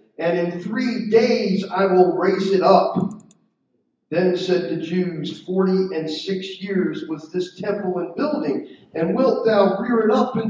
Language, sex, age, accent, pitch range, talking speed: English, male, 50-69, American, 190-235 Hz, 165 wpm